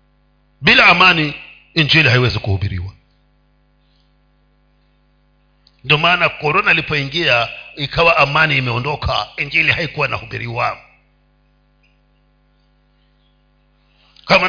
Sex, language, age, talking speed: male, Swahili, 50-69, 70 wpm